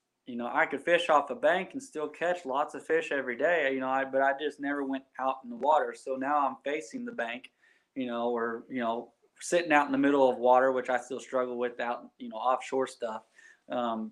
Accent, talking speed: American, 240 wpm